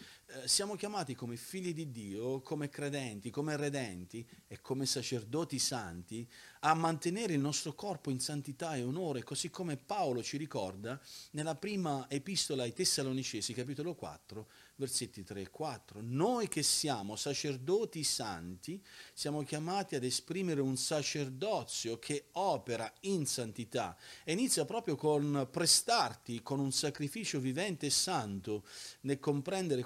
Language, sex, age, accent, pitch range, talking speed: Italian, male, 40-59, native, 120-155 Hz, 135 wpm